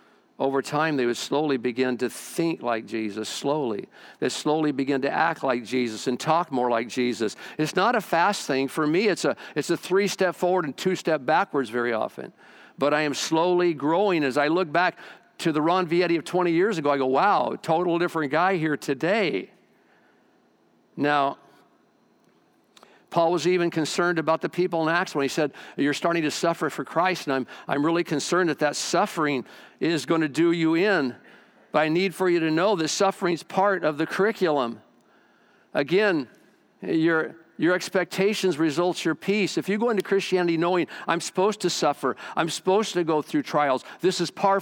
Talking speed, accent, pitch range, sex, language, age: 190 wpm, American, 150-185 Hz, male, English, 50-69